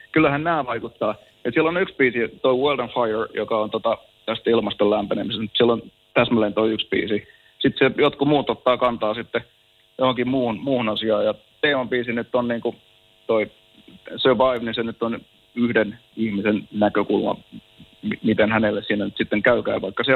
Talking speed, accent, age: 170 wpm, native, 30-49